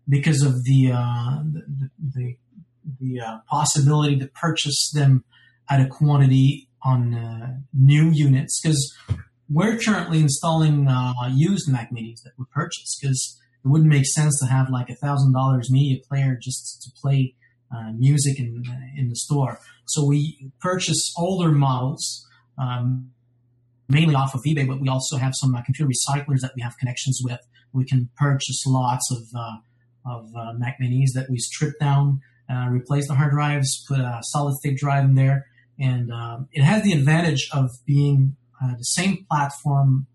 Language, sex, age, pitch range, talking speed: English, male, 30-49, 125-150 Hz, 170 wpm